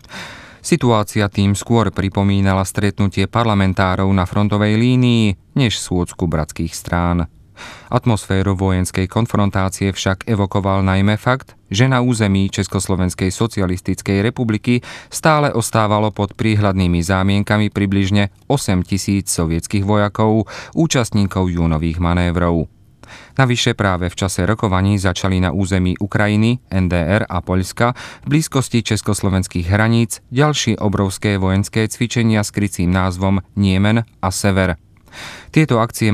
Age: 30-49